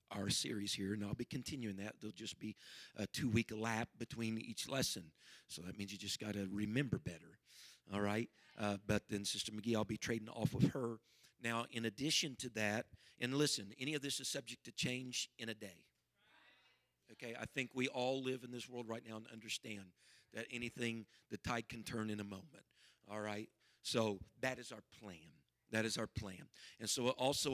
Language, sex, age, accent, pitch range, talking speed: English, male, 50-69, American, 105-125 Hz, 205 wpm